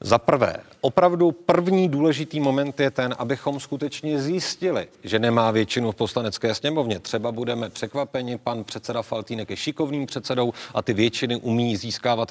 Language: Czech